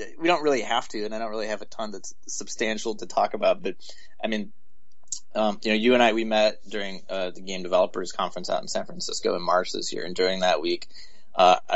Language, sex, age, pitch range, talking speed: English, male, 20-39, 90-115 Hz, 240 wpm